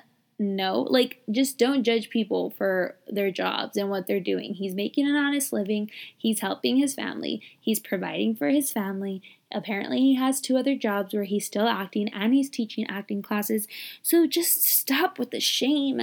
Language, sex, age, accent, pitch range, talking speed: English, female, 20-39, American, 210-265 Hz, 180 wpm